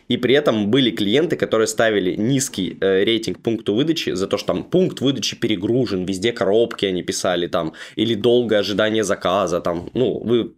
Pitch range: 100-120 Hz